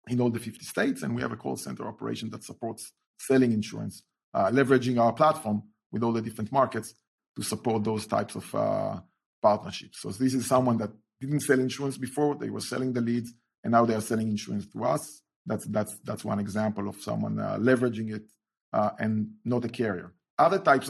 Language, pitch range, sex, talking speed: English, 110-130 Hz, male, 200 wpm